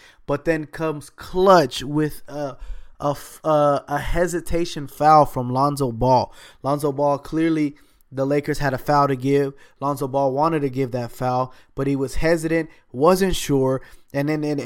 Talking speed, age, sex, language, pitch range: 165 wpm, 20-39, male, English, 130-150 Hz